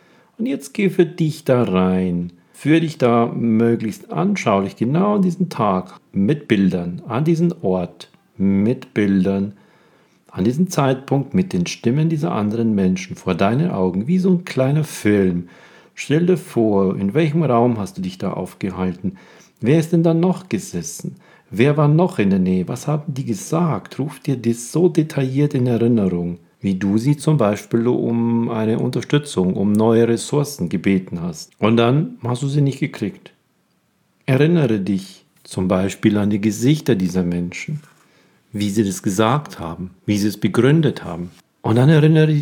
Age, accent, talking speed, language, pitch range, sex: 50-69, German, 165 wpm, German, 100-155 Hz, male